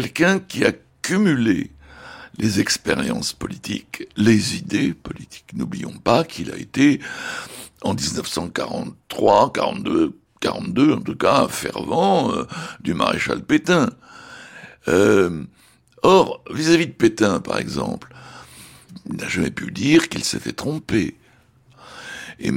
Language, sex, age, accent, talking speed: French, male, 60-79, French, 115 wpm